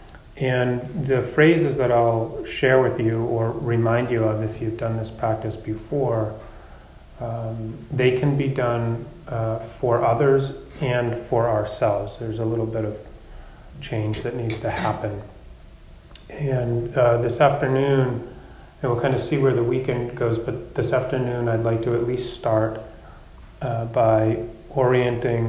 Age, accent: 30-49, American